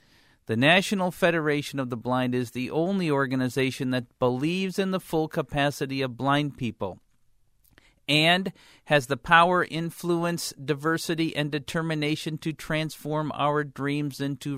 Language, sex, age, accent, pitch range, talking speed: English, male, 50-69, American, 135-165 Hz, 130 wpm